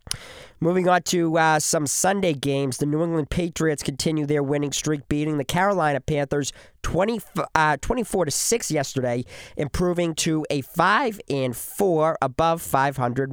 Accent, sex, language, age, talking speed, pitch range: American, male, English, 40-59, 150 wpm, 140-180 Hz